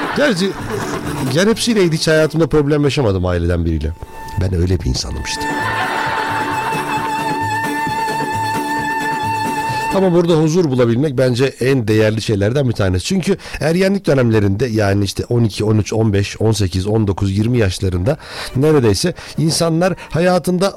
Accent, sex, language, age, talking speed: native, male, Turkish, 60-79, 115 wpm